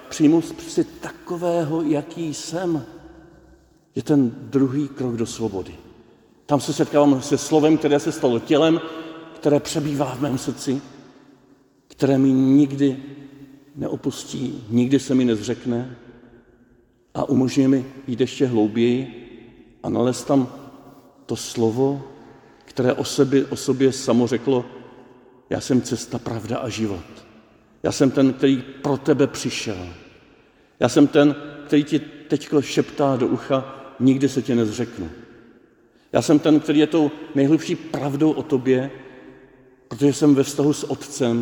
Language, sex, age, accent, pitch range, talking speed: Czech, male, 50-69, native, 125-150 Hz, 135 wpm